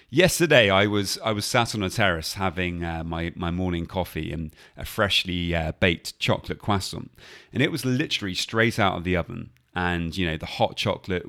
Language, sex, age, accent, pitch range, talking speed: English, male, 30-49, British, 90-120 Hz, 195 wpm